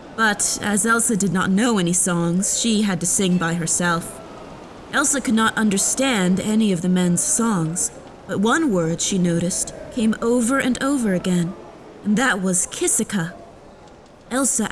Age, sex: 20-39, female